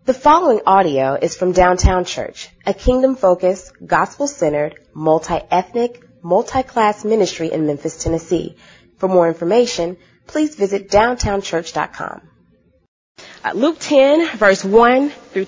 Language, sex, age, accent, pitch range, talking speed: English, female, 30-49, American, 190-270 Hz, 105 wpm